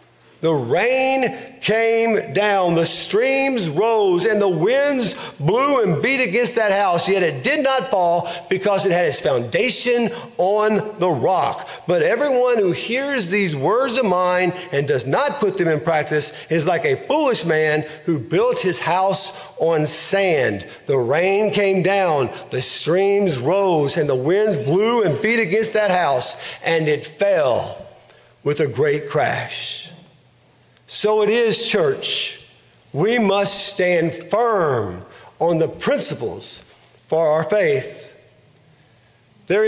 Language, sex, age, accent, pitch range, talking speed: English, male, 50-69, American, 165-225 Hz, 140 wpm